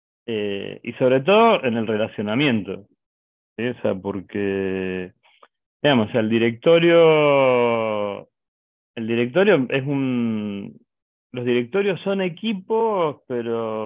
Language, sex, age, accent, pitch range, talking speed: Spanish, male, 40-59, Argentinian, 100-125 Hz, 110 wpm